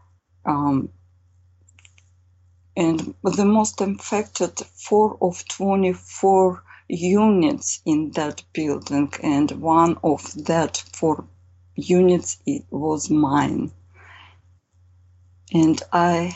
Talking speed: 90 wpm